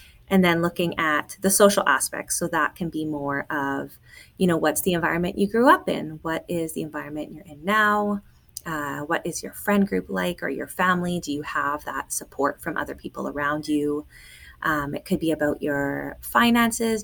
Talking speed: 195 wpm